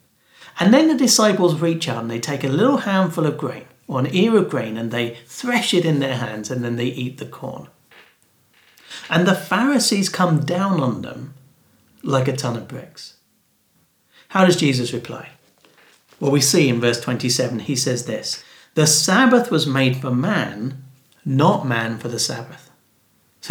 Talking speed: 175 wpm